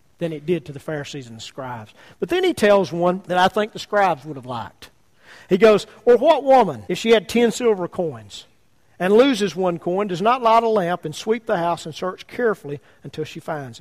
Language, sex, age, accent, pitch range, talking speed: English, male, 40-59, American, 170-225 Hz, 230 wpm